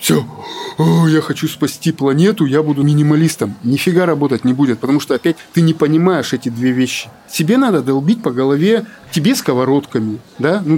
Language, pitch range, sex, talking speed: Russian, 120-160 Hz, male, 165 wpm